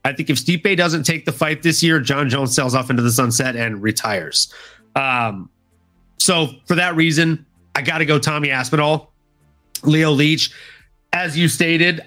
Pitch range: 125-165 Hz